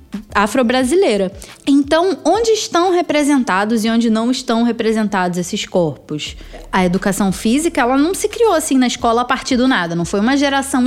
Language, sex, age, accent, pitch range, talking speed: Portuguese, female, 20-39, Brazilian, 205-295 Hz, 165 wpm